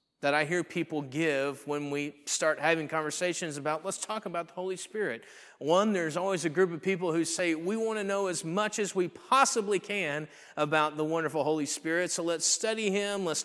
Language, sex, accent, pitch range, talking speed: English, male, American, 140-180 Hz, 205 wpm